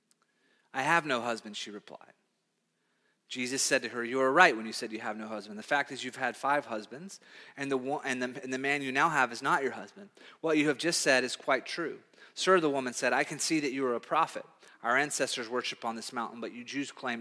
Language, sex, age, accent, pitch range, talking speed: English, male, 30-49, American, 145-215 Hz, 250 wpm